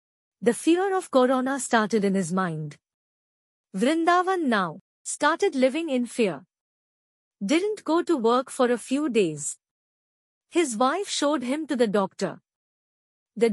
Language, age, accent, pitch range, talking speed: Hindi, 50-69, native, 215-310 Hz, 135 wpm